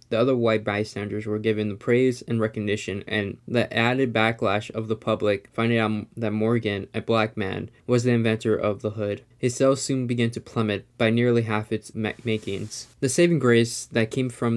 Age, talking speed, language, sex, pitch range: 20-39, 195 wpm, English, male, 110-125 Hz